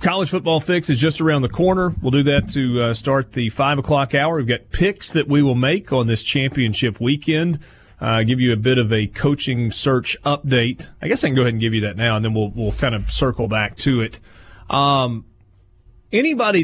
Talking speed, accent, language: 225 wpm, American, English